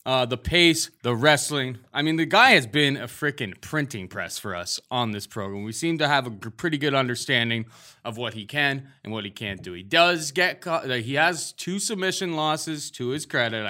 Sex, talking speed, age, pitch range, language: male, 215 wpm, 20-39, 120-160 Hz, English